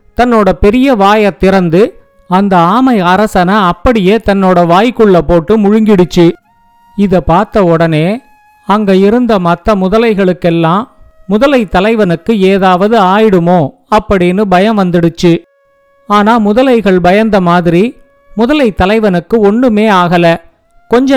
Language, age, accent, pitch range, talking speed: Tamil, 50-69, native, 190-235 Hz, 100 wpm